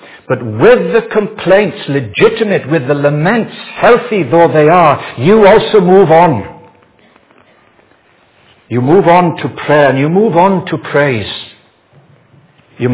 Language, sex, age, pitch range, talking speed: English, male, 60-79, 115-170 Hz, 130 wpm